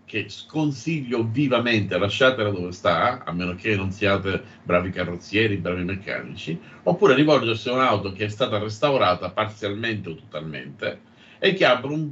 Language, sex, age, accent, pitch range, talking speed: Italian, male, 50-69, native, 100-125 Hz, 150 wpm